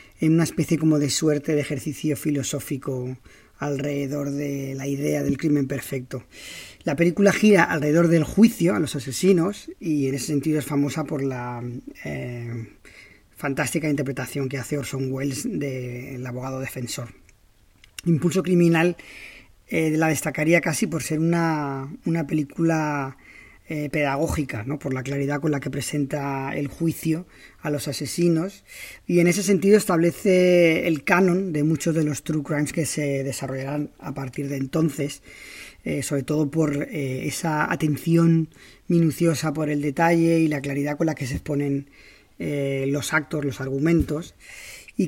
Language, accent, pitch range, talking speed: Spanish, Spanish, 140-165 Hz, 150 wpm